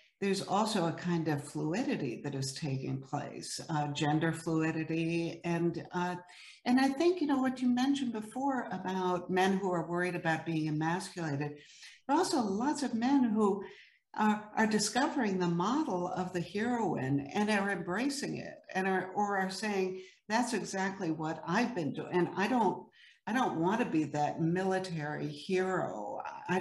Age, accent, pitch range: 60-79, American, 155-195 Hz